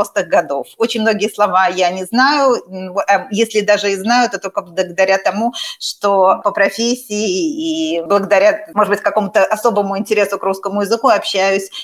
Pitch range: 185-235 Hz